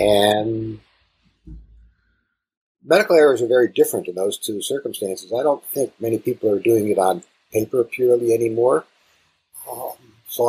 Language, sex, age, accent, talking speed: English, male, 50-69, American, 135 wpm